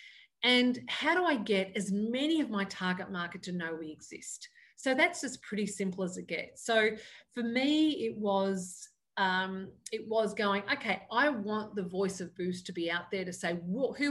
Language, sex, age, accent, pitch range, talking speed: English, female, 40-59, Australian, 180-230 Hz, 185 wpm